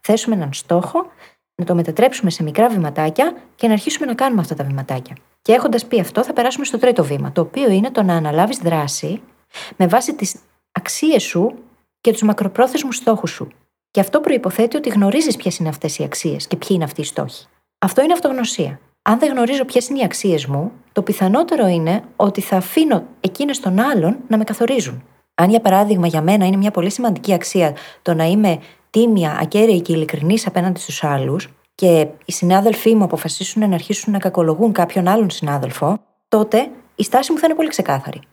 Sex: female